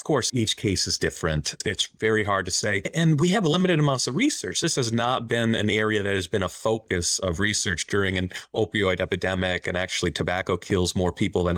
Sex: male